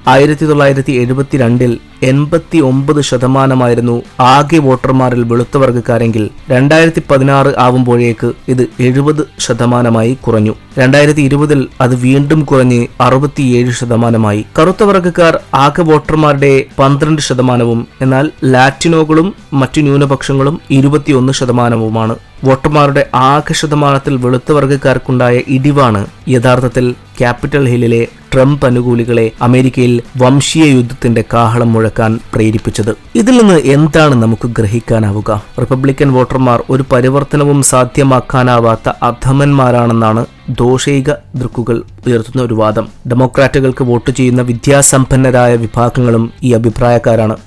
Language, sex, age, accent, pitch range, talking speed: Malayalam, male, 20-39, native, 120-140 Hz, 90 wpm